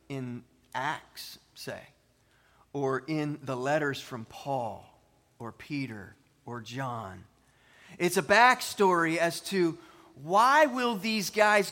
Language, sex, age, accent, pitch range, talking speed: English, male, 30-49, American, 140-205 Hz, 115 wpm